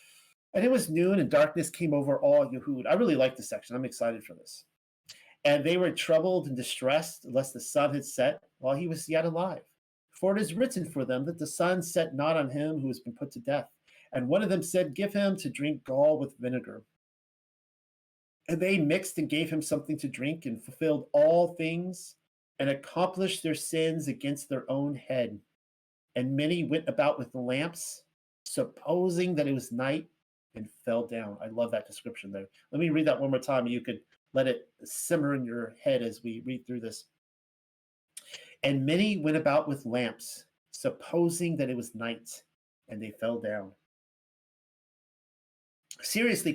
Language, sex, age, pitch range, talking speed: English, male, 40-59, 130-175 Hz, 185 wpm